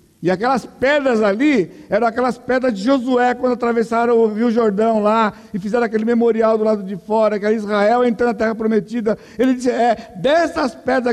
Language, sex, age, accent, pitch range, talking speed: Portuguese, male, 60-79, Brazilian, 220-260 Hz, 190 wpm